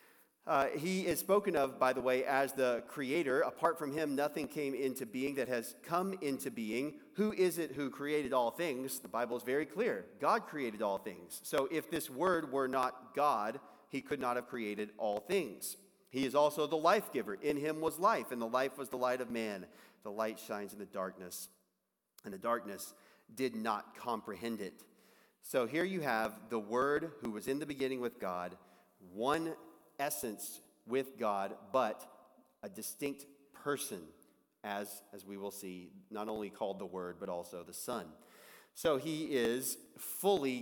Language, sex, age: English, male, 40-59